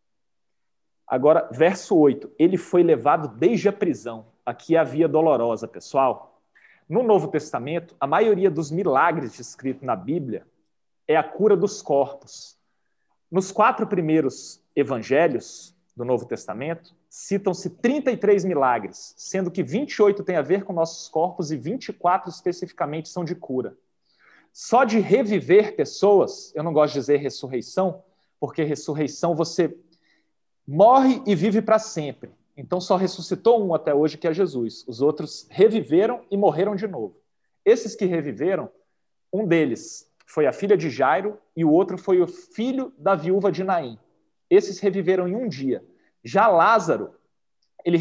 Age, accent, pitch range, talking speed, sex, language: 40-59, Brazilian, 155-205 Hz, 145 wpm, male, Portuguese